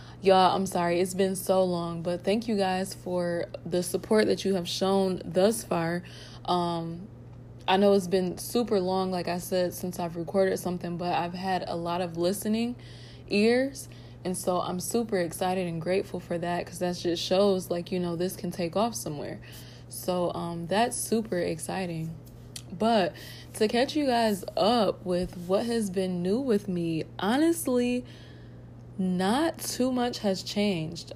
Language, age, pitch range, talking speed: English, 20-39, 175-195 Hz, 170 wpm